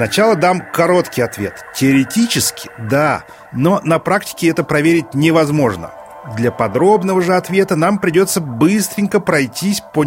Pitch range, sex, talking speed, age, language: 135-190 Hz, male, 125 wpm, 30-49, Russian